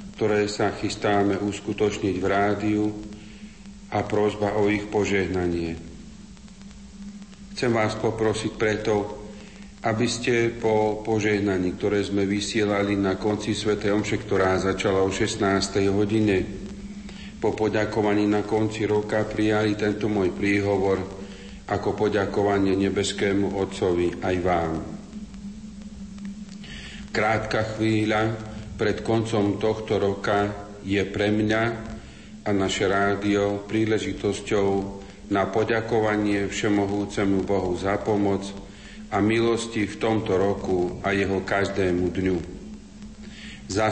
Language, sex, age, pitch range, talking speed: Slovak, male, 40-59, 100-110 Hz, 100 wpm